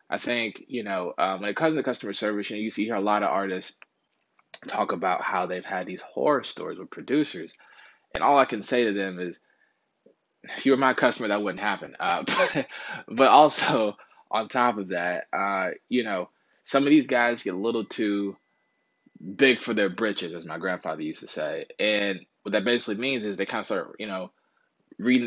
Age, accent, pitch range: 20-39, American, 95-115 Hz